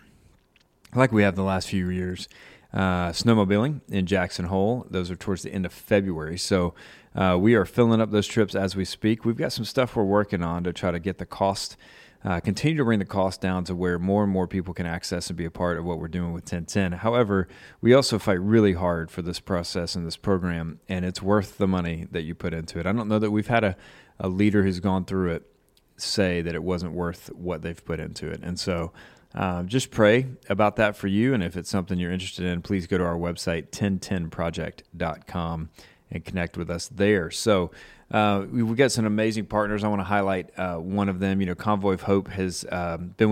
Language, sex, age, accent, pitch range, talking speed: English, male, 30-49, American, 90-105 Hz, 225 wpm